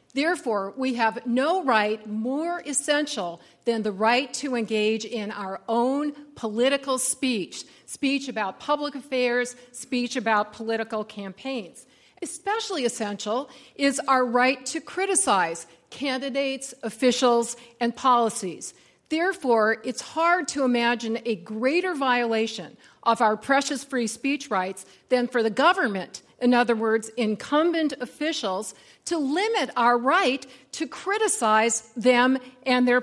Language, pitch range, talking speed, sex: English, 225-275 Hz, 125 wpm, female